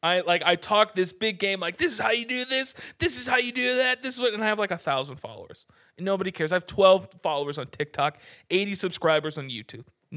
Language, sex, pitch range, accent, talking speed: English, male, 155-220 Hz, American, 255 wpm